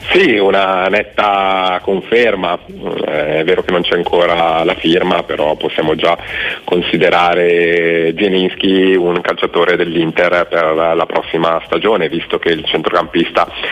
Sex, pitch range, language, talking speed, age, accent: male, 85-120 Hz, Italian, 120 wpm, 40-59, native